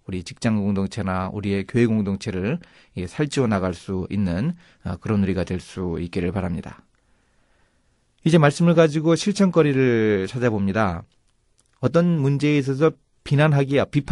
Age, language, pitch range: 30-49, Korean, 95-125 Hz